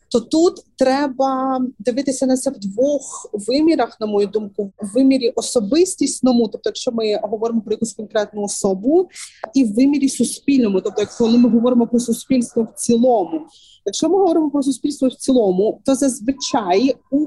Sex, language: female, Ukrainian